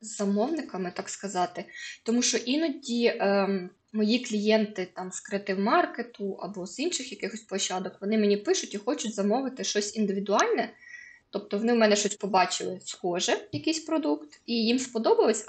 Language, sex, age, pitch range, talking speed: Ukrainian, female, 20-39, 210-270 Hz, 150 wpm